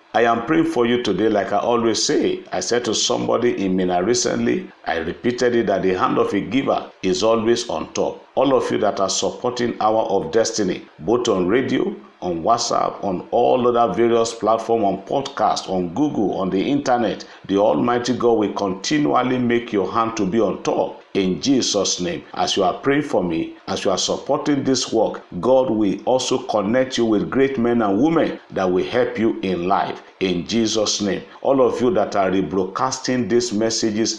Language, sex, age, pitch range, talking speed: English, male, 50-69, 100-120 Hz, 195 wpm